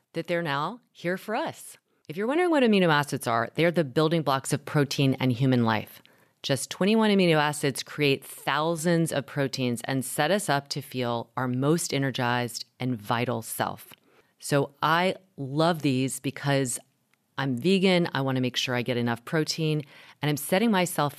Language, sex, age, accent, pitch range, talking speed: English, female, 30-49, American, 125-165 Hz, 175 wpm